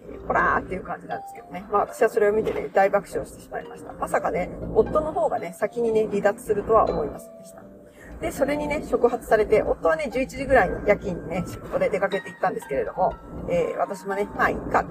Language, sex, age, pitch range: Japanese, female, 40-59, 190-295 Hz